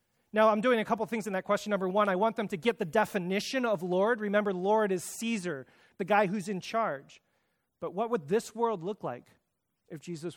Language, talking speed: English, 220 wpm